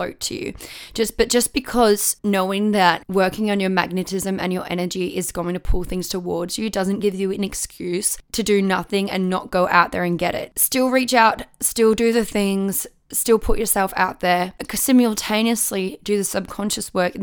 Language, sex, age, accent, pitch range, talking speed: English, female, 10-29, Australian, 180-210 Hz, 195 wpm